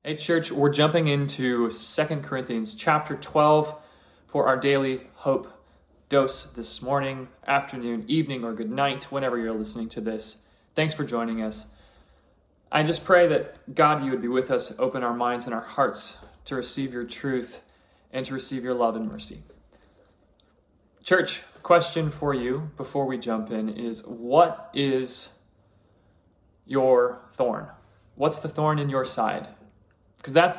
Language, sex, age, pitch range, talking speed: English, male, 20-39, 120-150 Hz, 155 wpm